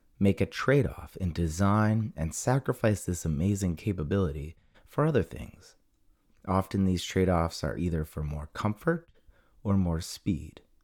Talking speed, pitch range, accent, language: 135 wpm, 80-110 Hz, American, English